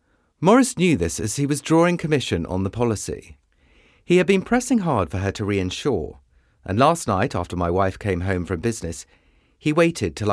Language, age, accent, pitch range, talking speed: English, 30-49, British, 85-125 Hz, 190 wpm